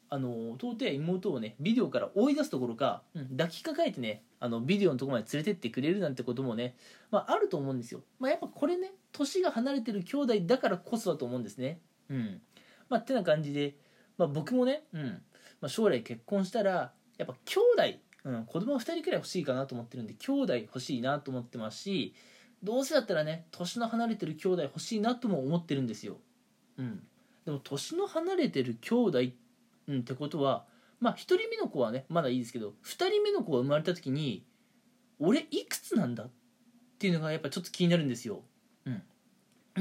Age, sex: 20-39, male